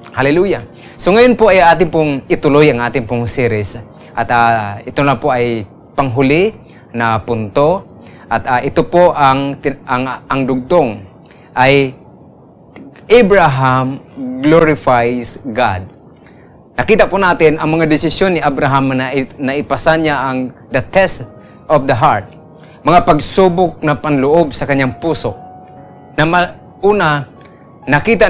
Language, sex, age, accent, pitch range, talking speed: Filipino, male, 20-39, native, 130-160 Hz, 130 wpm